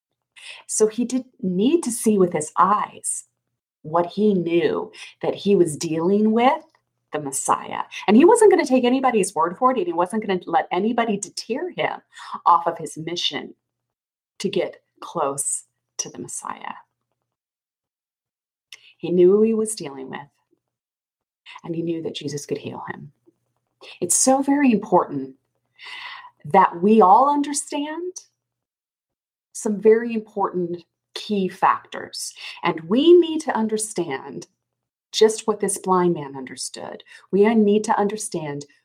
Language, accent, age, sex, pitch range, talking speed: English, American, 30-49, female, 175-255 Hz, 140 wpm